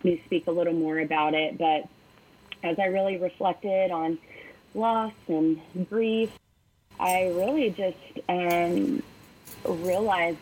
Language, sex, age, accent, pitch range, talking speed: English, female, 30-49, American, 155-180 Hz, 120 wpm